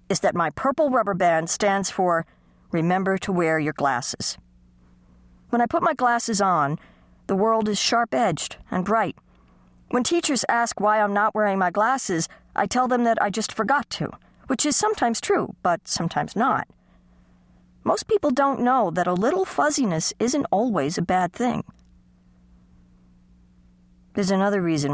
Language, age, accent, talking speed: English, 50-69, American, 155 wpm